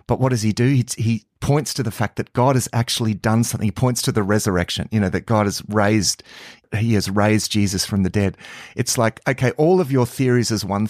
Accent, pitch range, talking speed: Australian, 105-130 Hz, 240 wpm